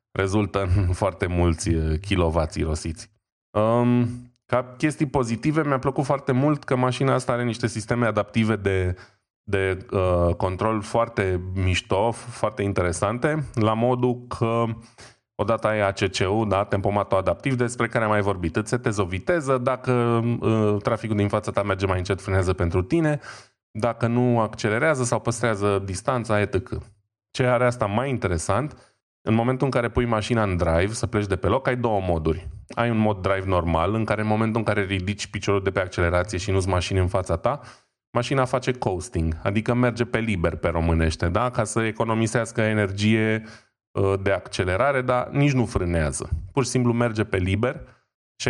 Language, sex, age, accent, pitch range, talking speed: Romanian, male, 20-39, native, 95-120 Hz, 165 wpm